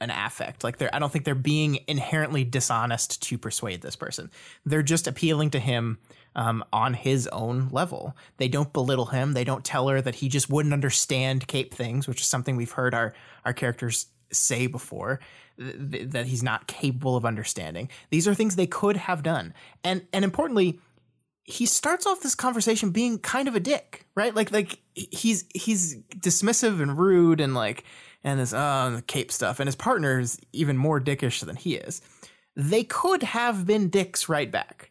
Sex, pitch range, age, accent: male, 130-170 Hz, 20-39, American